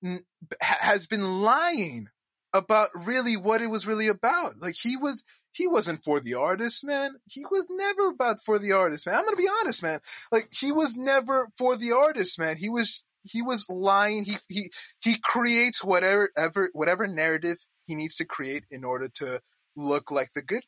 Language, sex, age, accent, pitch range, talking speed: English, male, 20-39, American, 175-245 Hz, 185 wpm